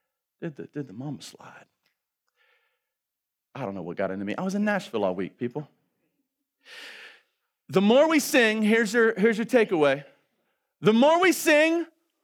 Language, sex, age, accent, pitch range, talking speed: English, male, 40-59, American, 200-310 Hz, 150 wpm